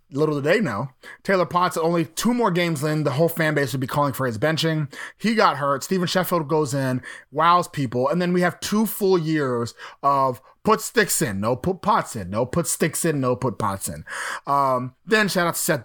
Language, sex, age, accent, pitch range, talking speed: English, male, 30-49, American, 140-215 Hz, 225 wpm